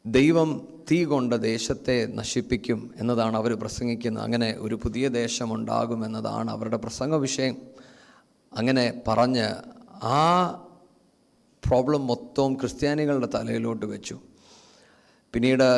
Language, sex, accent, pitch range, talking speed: Malayalam, male, native, 115-140 Hz, 90 wpm